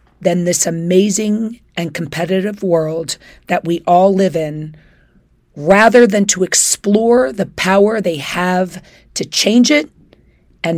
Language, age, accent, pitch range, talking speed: English, 40-59, American, 160-205 Hz, 130 wpm